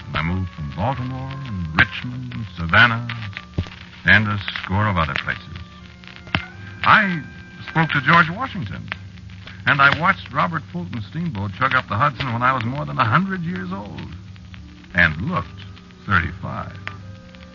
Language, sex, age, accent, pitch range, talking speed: English, male, 60-79, American, 85-100 Hz, 130 wpm